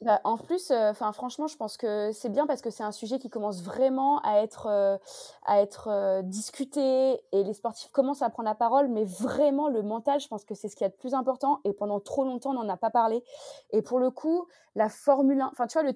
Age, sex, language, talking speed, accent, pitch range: 20-39, female, French, 260 wpm, French, 220-280 Hz